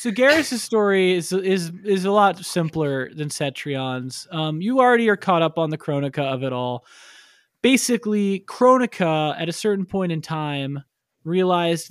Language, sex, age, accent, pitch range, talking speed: English, male, 20-39, American, 150-195 Hz, 160 wpm